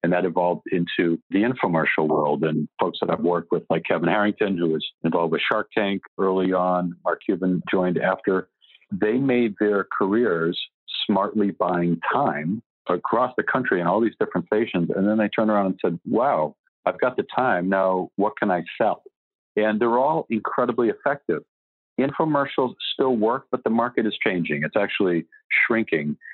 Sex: male